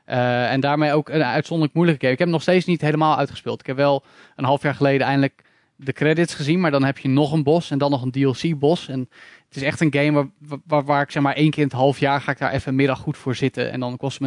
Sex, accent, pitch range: male, Dutch, 125-145 Hz